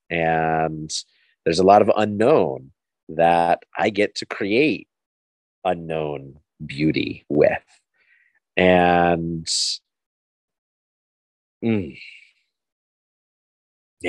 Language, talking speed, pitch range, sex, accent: English, 70 wpm, 80-105 Hz, male, American